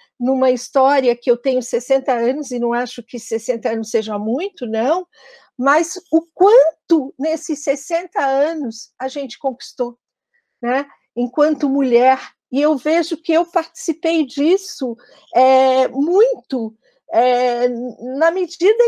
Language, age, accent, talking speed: Portuguese, 50-69, Brazilian, 125 wpm